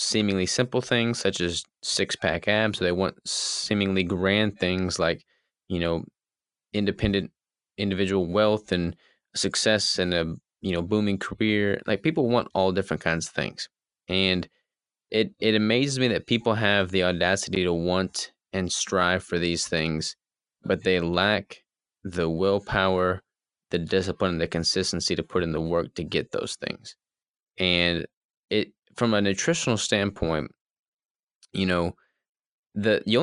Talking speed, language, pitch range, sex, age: 140 wpm, English, 85-105 Hz, male, 20-39